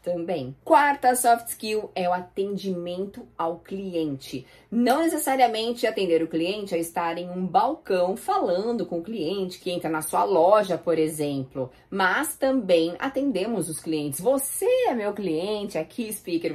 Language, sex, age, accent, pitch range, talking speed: Portuguese, female, 20-39, Brazilian, 160-195 Hz, 145 wpm